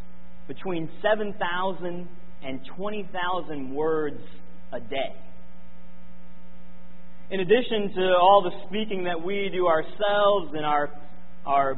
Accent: American